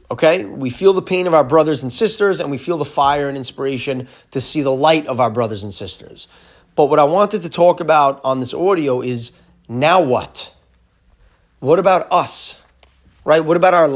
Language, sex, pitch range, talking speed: English, male, 120-160 Hz, 200 wpm